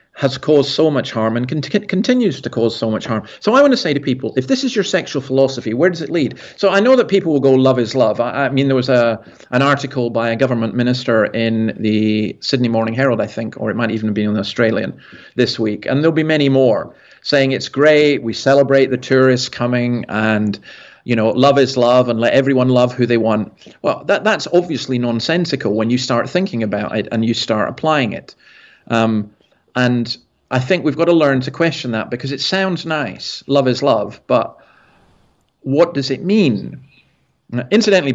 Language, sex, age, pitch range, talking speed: English, male, 40-59, 115-140 Hz, 210 wpm